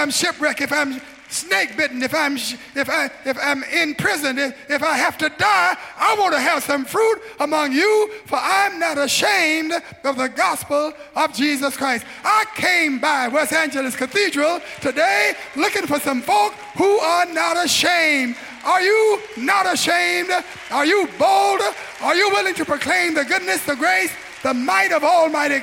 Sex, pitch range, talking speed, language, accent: male, 275-375 Hz, 165 wpm, English, American